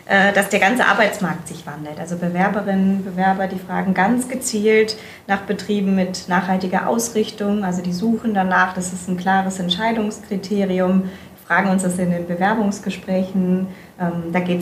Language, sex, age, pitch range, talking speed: German, female, 30-49, 175-200 Hz, 150 wpm